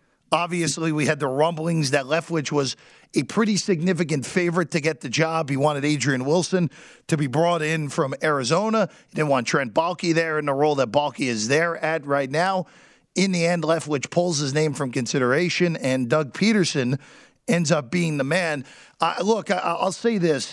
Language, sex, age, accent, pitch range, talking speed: English, male, 40-59, American, 150-190 Hz, 185 wpm